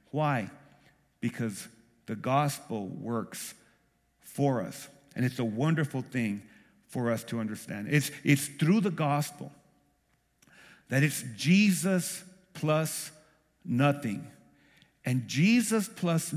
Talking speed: 105 wpm